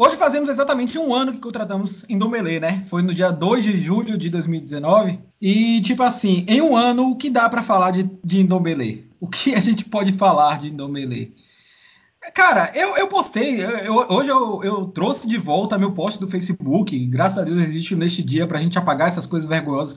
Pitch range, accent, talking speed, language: 185-260 Hz, Brazilian, 195 wpm, Portuguese